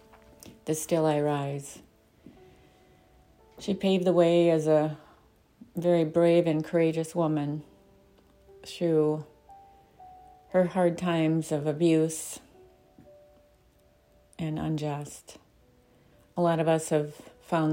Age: 40-59